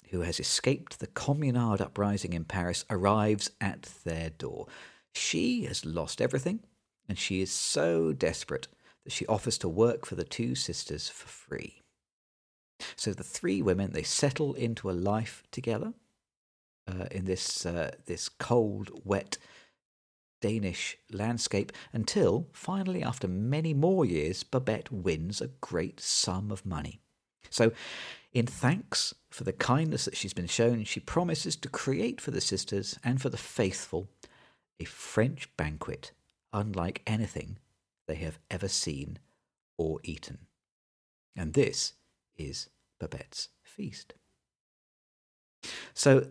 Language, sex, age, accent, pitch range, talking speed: English, male, 50-69, British, 95-120 Hz, 130 wpm